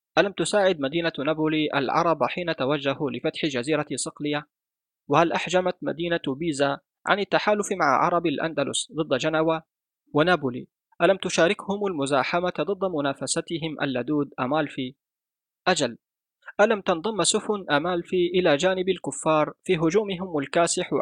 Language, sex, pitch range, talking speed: Arabic, male, 145-180 Hz, 115 wpm